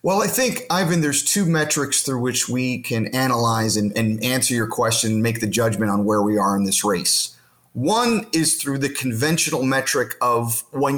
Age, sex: 30-49, male